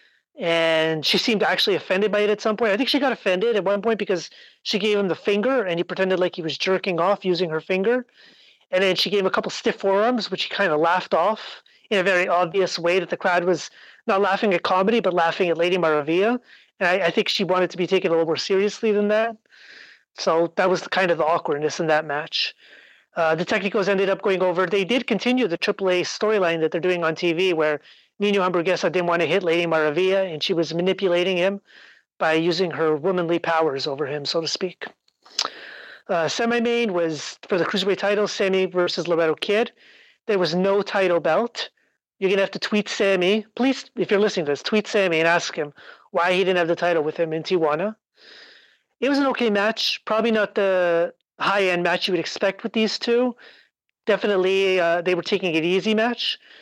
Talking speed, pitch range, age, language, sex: 215 wpm, 170-210 Hz, 30-49, English, male